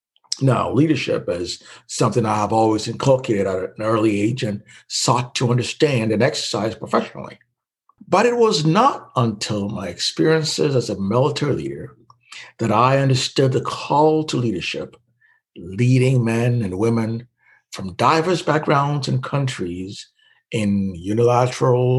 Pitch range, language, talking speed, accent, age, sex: 105-135 Hz, English, 130 wpm, American, 60-79, male